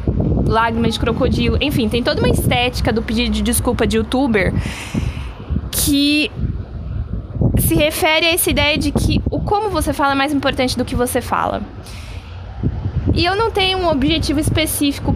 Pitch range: 195-260 Hz